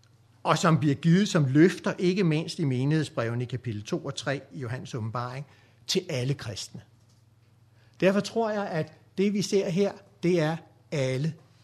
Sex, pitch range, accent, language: male, 115-165 Hz, native, Danish